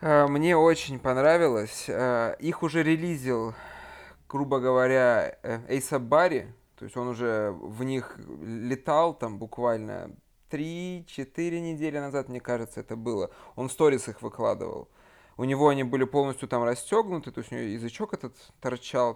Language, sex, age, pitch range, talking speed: Russian, male, 20-39, 120-155 Hz, 140 wpm